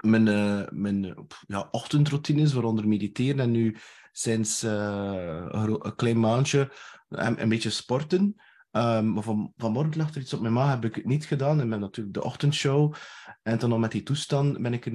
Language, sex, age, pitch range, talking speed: Dutch, male, 20-39, 110-140 Hz, 190 wpm